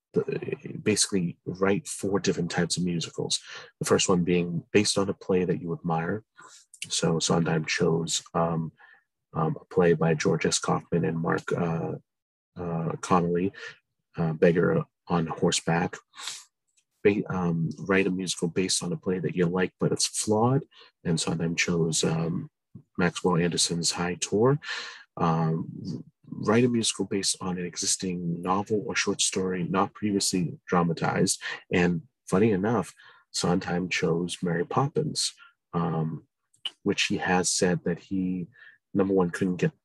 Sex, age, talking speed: male, 30-49, 145 wpm